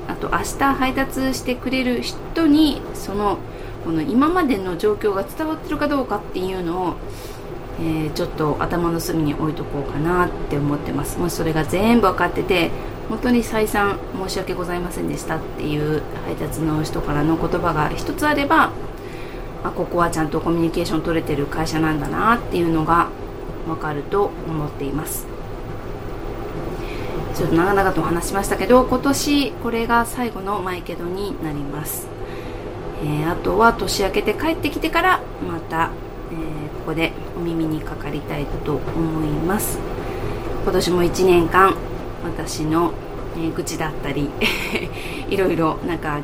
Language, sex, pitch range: Japanese, female, 155-215 Hz